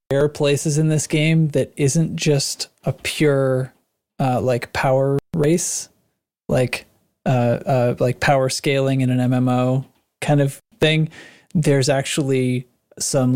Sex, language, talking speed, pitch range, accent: male, English, 130 wpm, 125-150 Hz, American